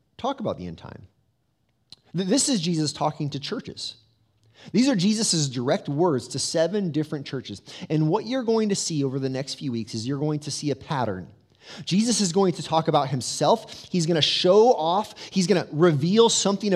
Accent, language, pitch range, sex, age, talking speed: American, English, 135-200 Hz, male, 30-49, 195 wpm